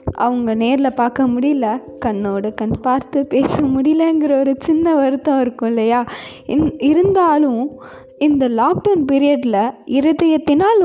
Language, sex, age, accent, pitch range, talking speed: Tamil, female, 20-39, native, 230-295 Hz, 110 wpm